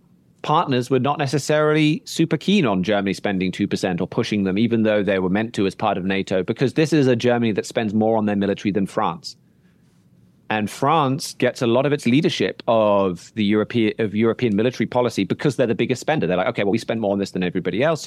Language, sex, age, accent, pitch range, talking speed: English, male, 30-49, British, 100-130 Hz, 225 wpm